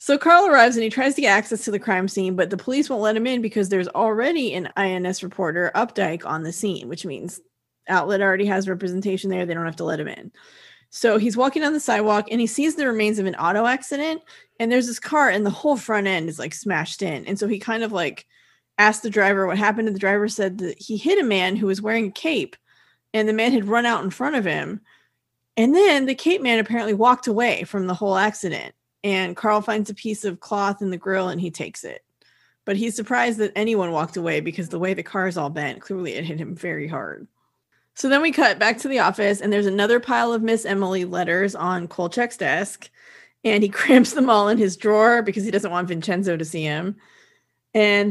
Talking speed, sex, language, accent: 235 wpm, female, English, American